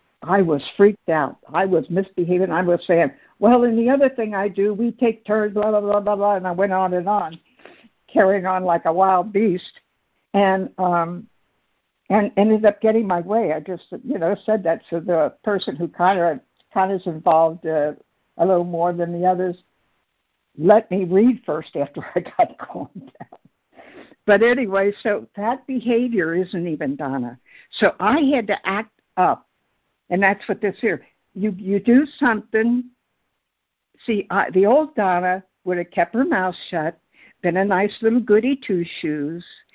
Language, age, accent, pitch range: English, 60-79, American, 175-215 Hz